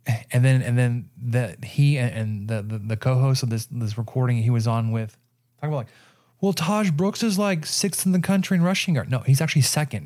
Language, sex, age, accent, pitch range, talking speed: English, male, 30-49, American, 120-135 Hz, 225 wpm